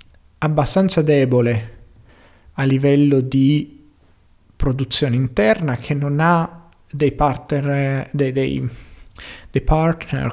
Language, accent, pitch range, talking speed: Italian, native, 120-150 Hz, 95 wpm